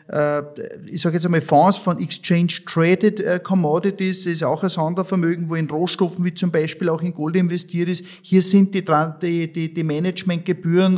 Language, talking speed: German, 165 wpm